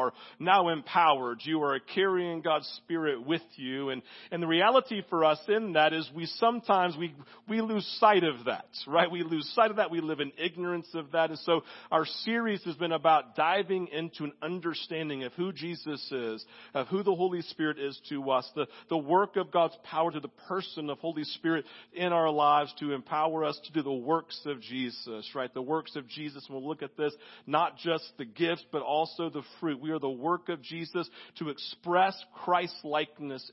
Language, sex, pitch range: English, male, 140-175 Hz